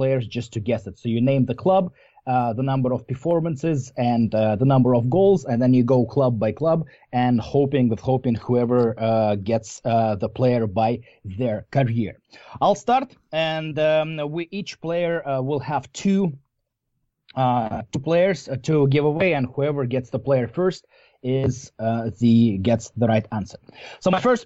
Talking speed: 180 wpm